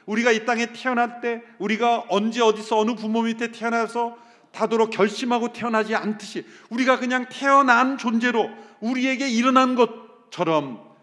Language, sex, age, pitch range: Korean, male, 40-59, 140-215 Hz